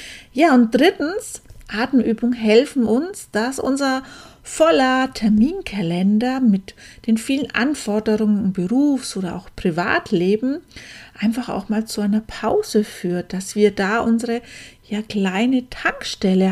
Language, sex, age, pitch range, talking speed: German, female, 40-59, 200-240 Hz, 115 wpm